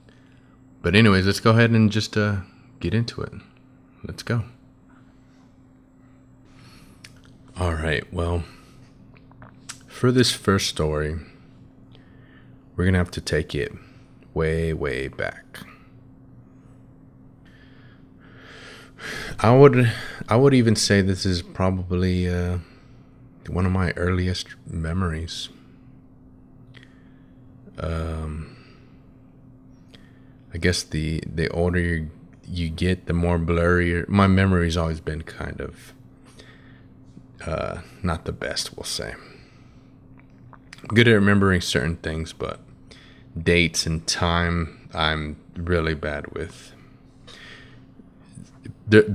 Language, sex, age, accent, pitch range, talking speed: English, male, 30-49, American, 85-110 Hz, 100 wpm